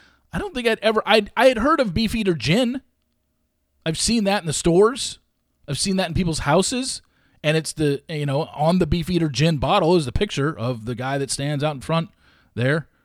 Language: English